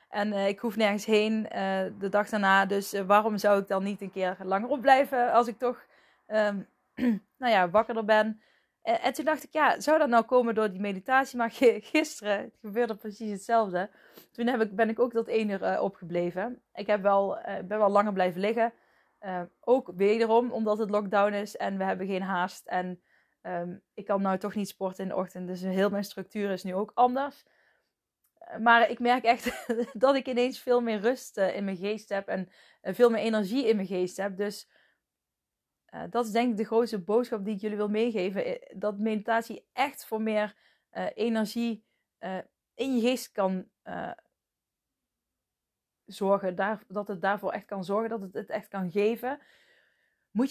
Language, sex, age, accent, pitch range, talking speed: Dutch, female, 20-39, Dutch, 195-235 Hz, 190 wpm